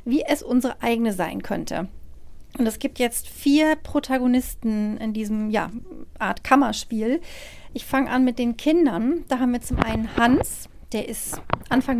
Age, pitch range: 40-59, 225-270 Hz